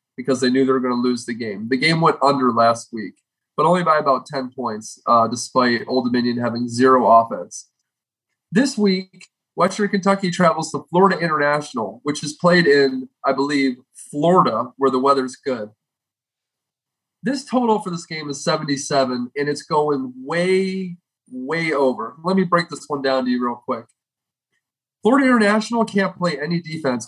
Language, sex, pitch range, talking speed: English, male, 135-195 Hz, 170 wpm